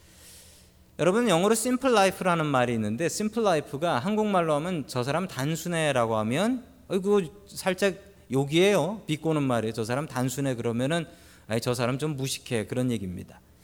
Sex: male